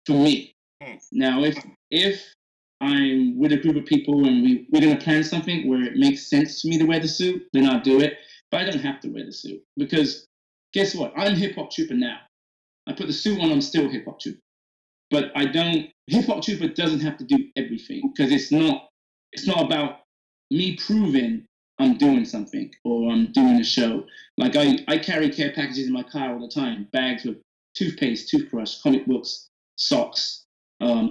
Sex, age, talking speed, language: male, 30-49, 200 wpm, English